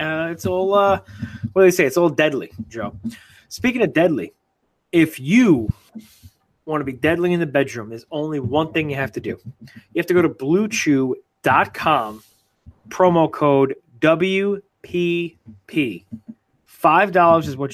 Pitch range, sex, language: 135-185 Hz, male, English